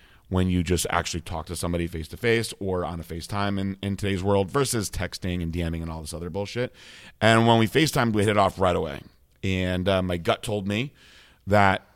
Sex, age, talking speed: male, 30-49, 210 wpm